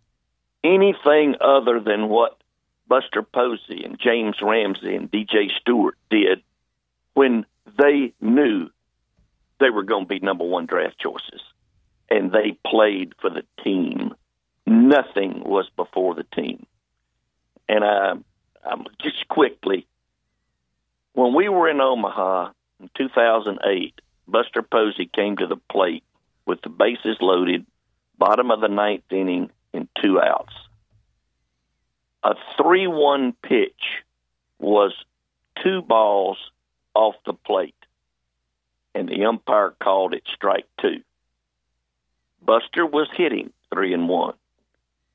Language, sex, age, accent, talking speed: English, male, 50-69, American, 115 wpm